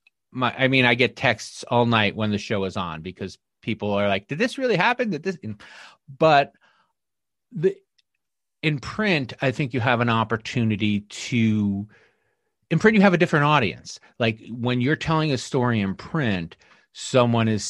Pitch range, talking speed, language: 110-150 Hz, 175 wpm, English